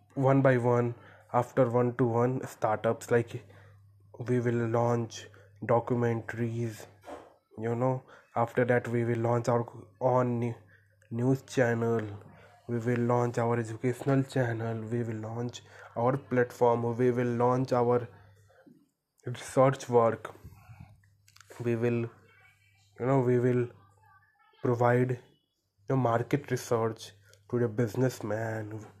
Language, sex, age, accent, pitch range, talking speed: Hindi, male, 20-39, native, 110-130 Hz, 110 wpm